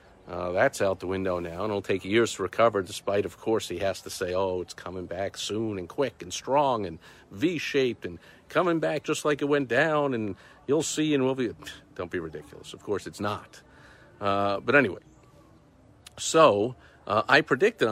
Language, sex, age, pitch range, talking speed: English, male, 50-69, 100-135 Hz, 195 wpm